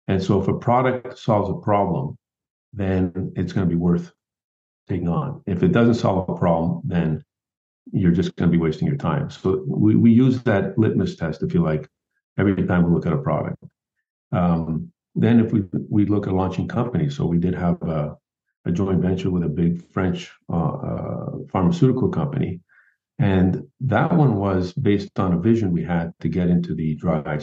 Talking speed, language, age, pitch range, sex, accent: 195 wpm, English, 50-69, 90-115 Hz, male, American